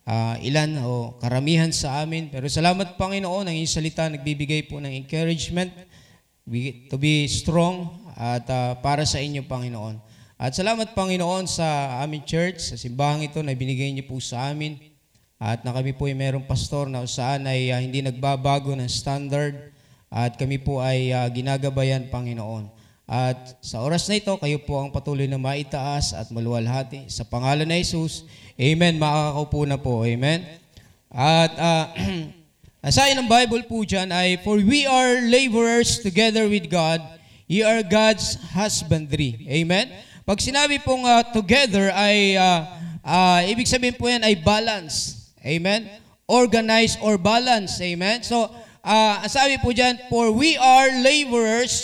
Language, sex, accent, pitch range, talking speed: Filipino, male, native, 135-215 Hz, 155 wpm